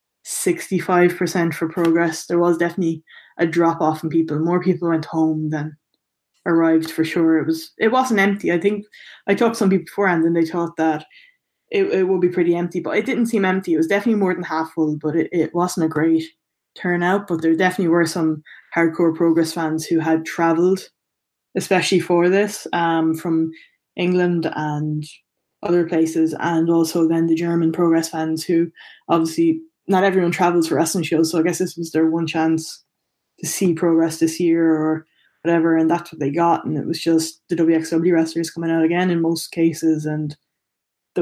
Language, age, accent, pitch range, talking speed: English, 10-29, Irish, 160-175 Hz, 190 wpm